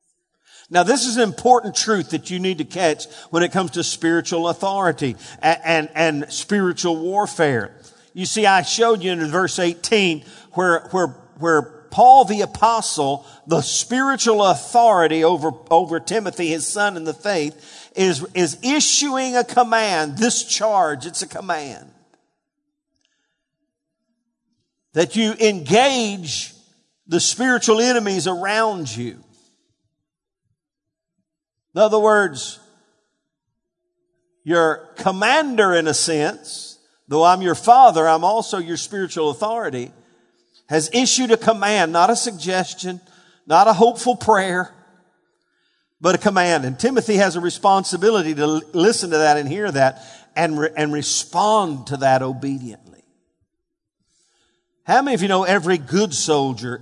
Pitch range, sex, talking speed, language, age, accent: 155-220 Hz, male, 130 wpm, English, 50-69, American